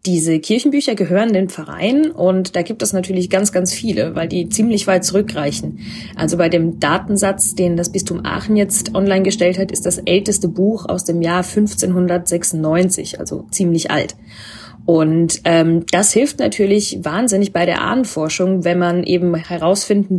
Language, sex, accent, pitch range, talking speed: German, female, German, 170-200 Hz, 160 wpm